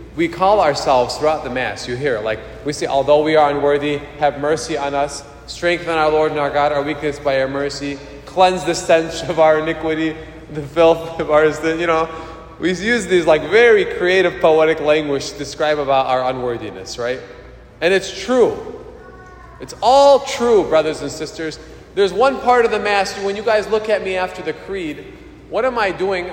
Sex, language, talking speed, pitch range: male, English, 190 wpm, 140-185 Hz